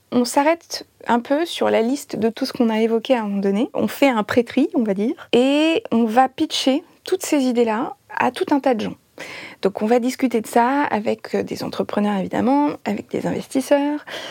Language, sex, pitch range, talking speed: French, female, 230-275 Hz, 210 wpm